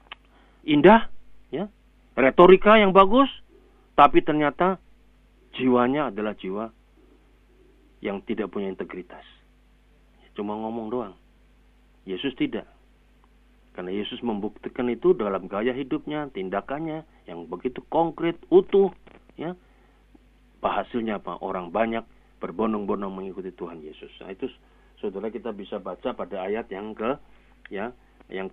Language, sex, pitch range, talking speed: Indonesian, male, 105-150 Hz, 110 wpm